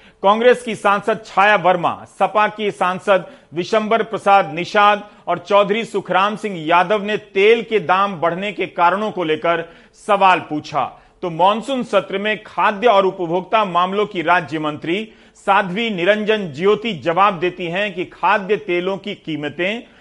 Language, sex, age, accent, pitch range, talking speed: Hindi, male, 40-59, native, 175-210 Hz, 145 wpm